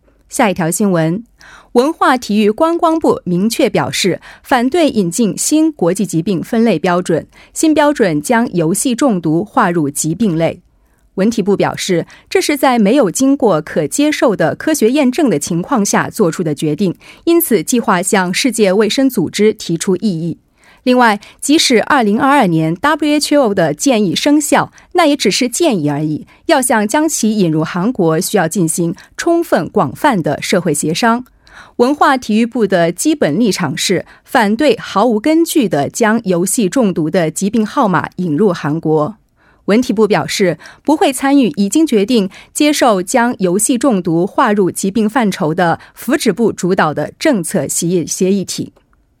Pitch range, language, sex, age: 175-270 Hz, Korean, female, 30-49